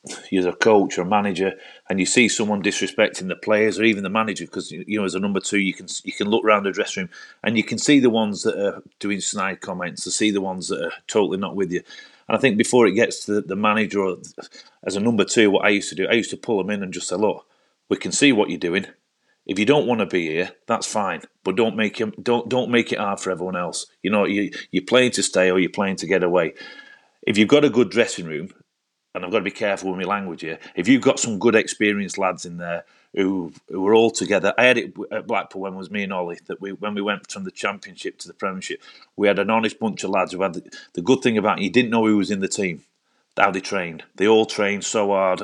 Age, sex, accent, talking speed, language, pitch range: 30-49, male, British, 275 wpm, English, 95-110 Hz